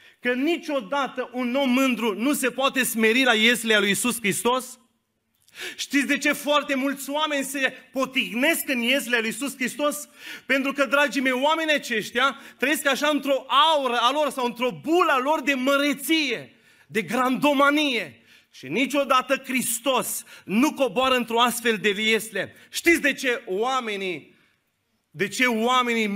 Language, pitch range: Romanian, 235-280 Hz